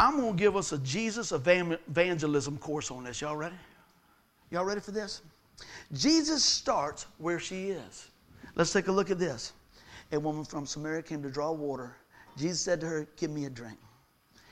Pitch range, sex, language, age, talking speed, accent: 150-215 Hz, male, English, 50-69, 180 wpm, American